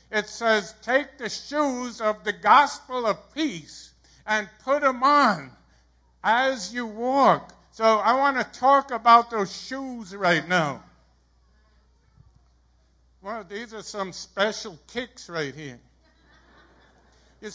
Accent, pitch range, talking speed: American, 185-235 Hz, 125 wpm